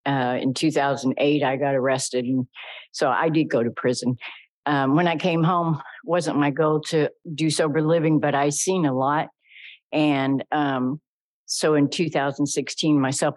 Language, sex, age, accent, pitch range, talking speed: English, female, 60-79, American, 145-190 Hz, 160 wpm